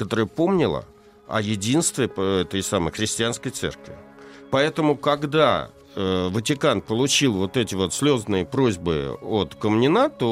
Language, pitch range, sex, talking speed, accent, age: Russian, 85-130 Hz, male, 115 wpm, native, 60-79